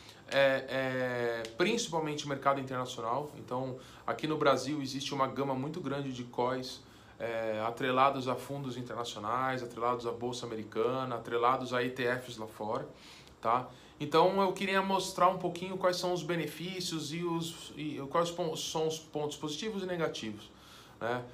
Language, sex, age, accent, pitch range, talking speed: Portuguese, male, 20-39, Brazilian, 135-180 Hz, 150 wpm